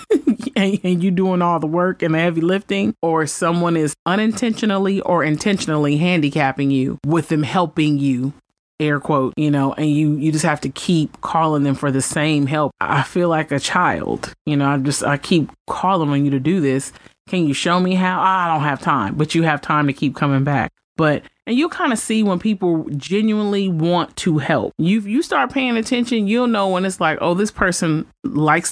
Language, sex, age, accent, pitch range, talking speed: English, male, 30-49, American, 155-200 Hz, 205 wpm